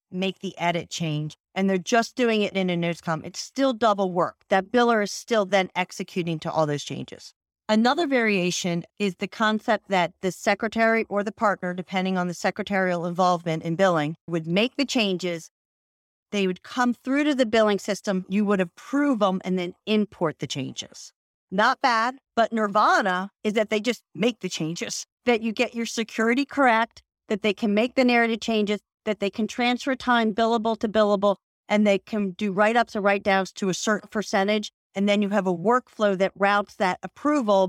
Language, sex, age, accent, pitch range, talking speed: English, female, 40-59, American, 185-220 Hz, 190 wpm